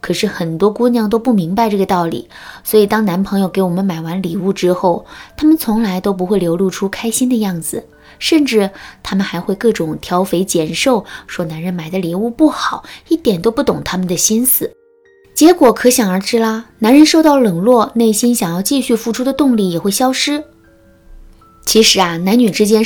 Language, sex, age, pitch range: Chinese, female, 20-39, 180-245 Hz